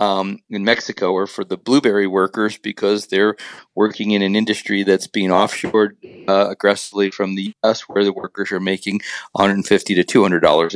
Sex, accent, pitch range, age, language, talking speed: male, American, 95-110 Hz, 40-59, English, 175 wpm